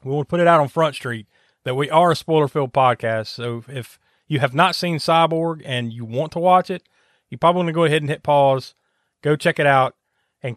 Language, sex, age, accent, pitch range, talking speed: English, male, 30-49, American, 125-150 Hz, 240 wpm